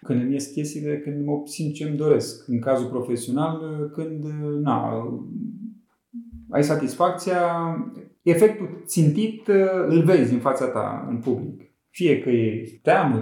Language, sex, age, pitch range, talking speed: Romanian, male, 30-49, 115-185 Hz, 130 wpm